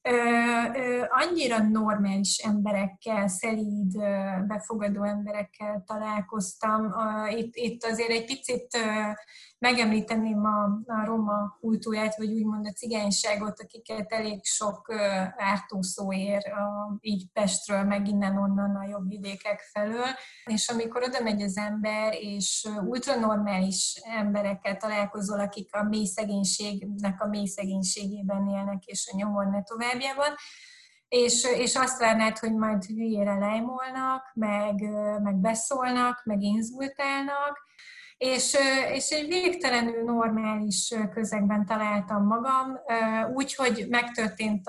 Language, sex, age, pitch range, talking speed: Hungarian, female, 20-39, 205-235 Hz, 100 wpm